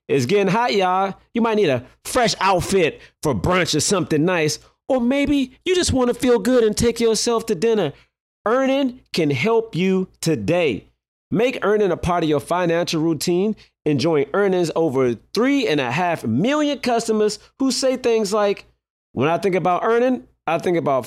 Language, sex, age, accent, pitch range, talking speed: English, male, 30-49, American, 150-220 Hz, 175 wpm